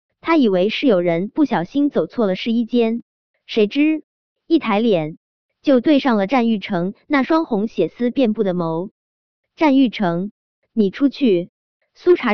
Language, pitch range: Chinese, 185-270 Hz